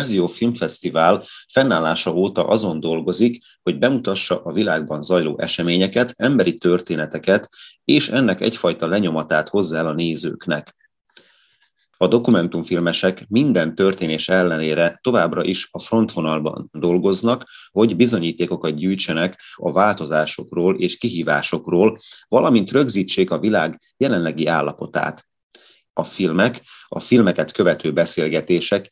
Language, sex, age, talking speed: Hungarian, male, 30-49, 105 wpm